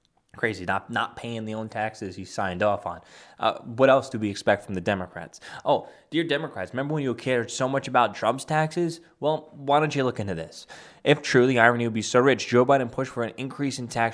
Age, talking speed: 10-29, 235 wpm